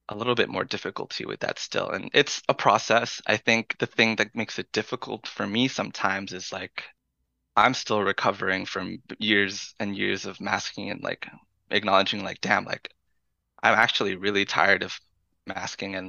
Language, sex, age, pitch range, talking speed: English, male, 20-39, 95-115 Hz, 175 wpm